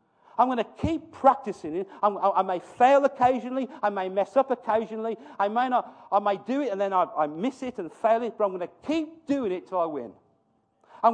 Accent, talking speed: British, 230 wpm